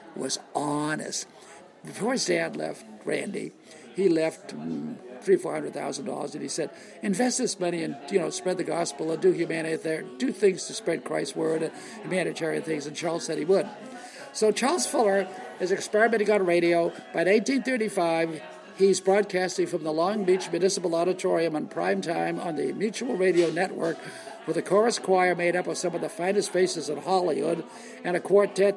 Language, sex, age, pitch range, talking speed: English, male, 60-79, 170-210 Hz, 180 wpm